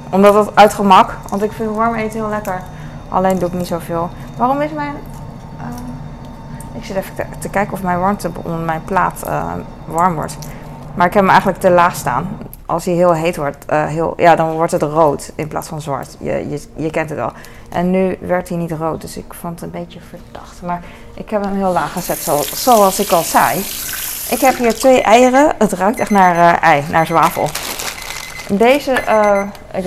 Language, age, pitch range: Dutch, 20-39, 170-215 Hz